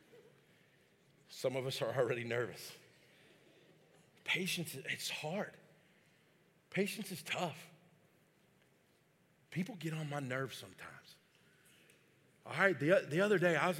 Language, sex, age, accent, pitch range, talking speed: English, male, 40-59, American, 135-175 Hz, 115 wpm